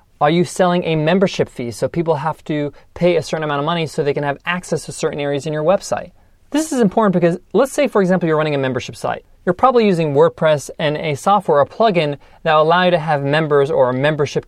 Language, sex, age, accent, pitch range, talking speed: English, male, 30-49, American, 150-195 Hz, 245 wpm